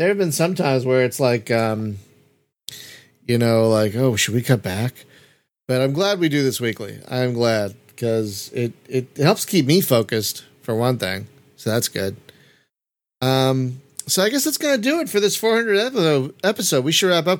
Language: English